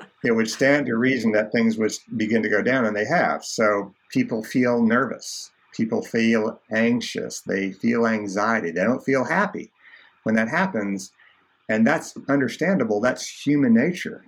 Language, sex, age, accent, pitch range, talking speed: English, male, 50-69, American, 110-145 Hz, 160 wpm